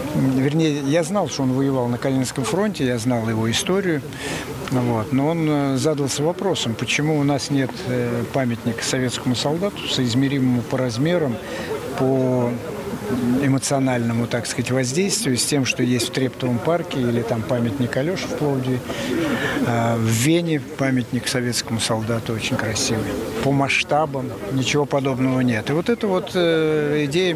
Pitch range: 125-145 Hz